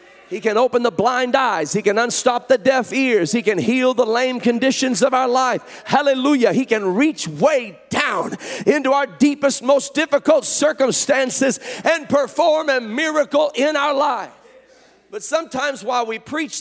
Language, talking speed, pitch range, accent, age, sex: English, 165 wpm, 235-295 Hz, American, 40-59, male